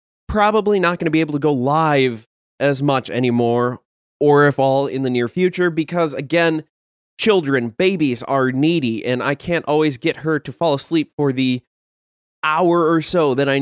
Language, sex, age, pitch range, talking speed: English, male, 20-39, 130-165 Hz, 180 wpm